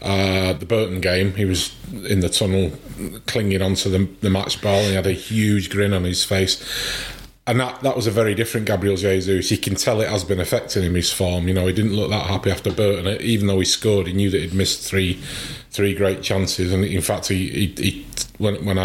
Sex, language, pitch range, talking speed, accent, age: male, English, 95-110 Hz, 230 wpm, British, 30-49